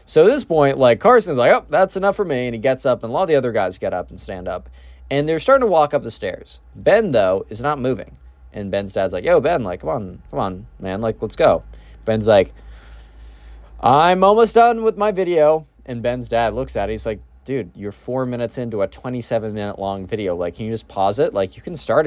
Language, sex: English, male